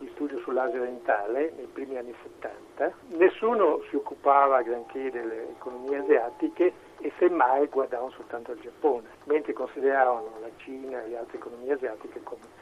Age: 60-79